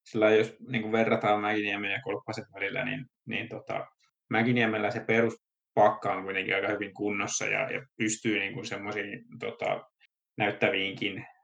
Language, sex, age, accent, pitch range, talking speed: Finnish, male, 20-39, native, 105-115 Hz, 135 wpm